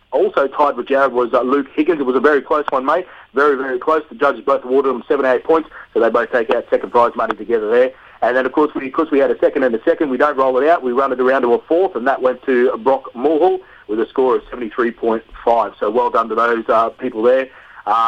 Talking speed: 260 wpm